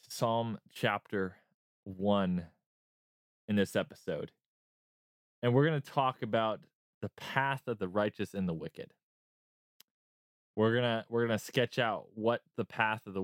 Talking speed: 140 wpm